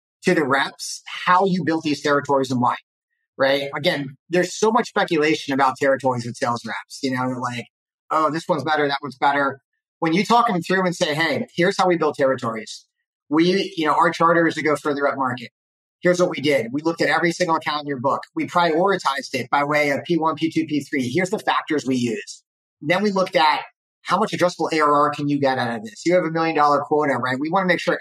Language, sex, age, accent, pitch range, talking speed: English, male, 30-49, American, 140-175 Hz, 230 wpm